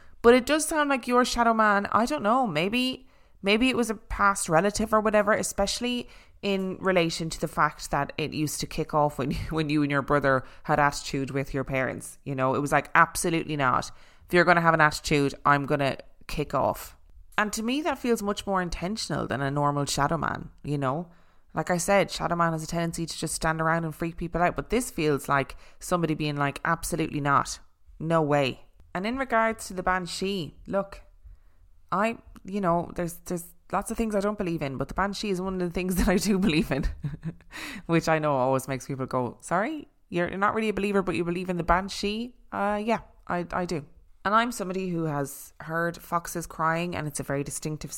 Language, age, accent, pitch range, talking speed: English, 20-39, Irish, 145-195 Hz, 215 wpm